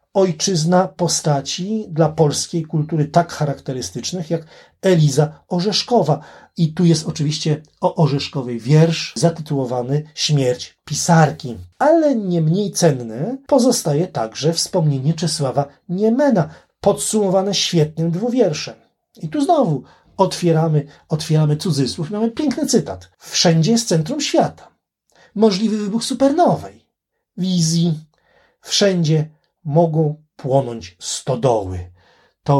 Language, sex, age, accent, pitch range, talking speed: Polish, male, 40-59, native, 140-190 Hz, 100 wpm